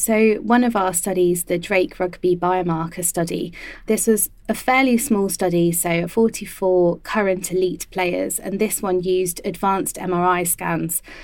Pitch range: 170-185 Hz